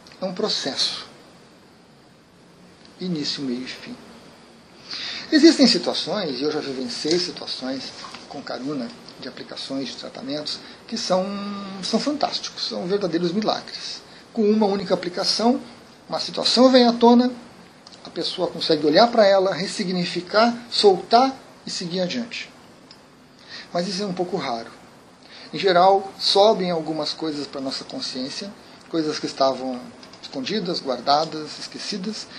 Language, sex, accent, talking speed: Portuguese, male, Brazilian, 125 wpm